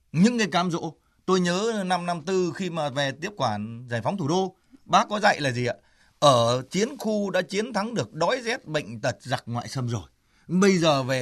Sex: male